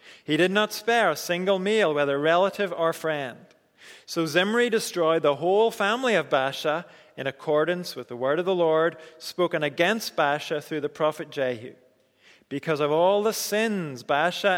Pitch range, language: 150-195 Hz, English